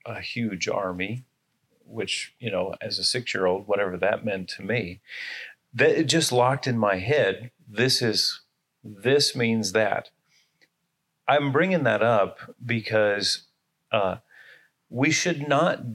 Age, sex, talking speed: 40-59, male, 130 wpm